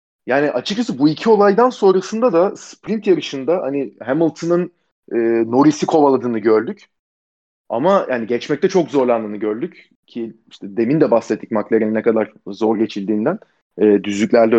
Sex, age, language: male, 40-59, Turkish